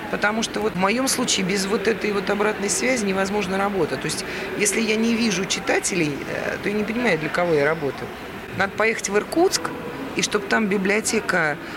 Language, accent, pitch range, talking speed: Russian, native, 170-215 Hz, 190 wpm